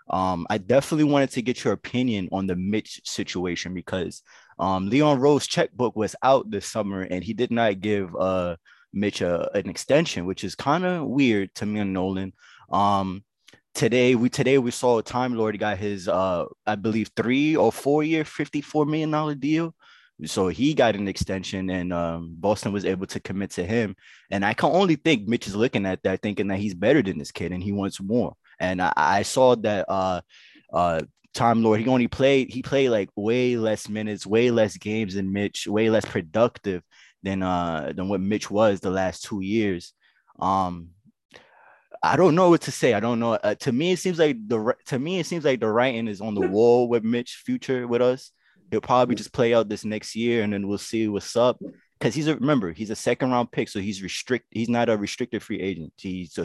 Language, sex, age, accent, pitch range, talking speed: English, male, 20-39, American, 95-125 Hz, 210 wpm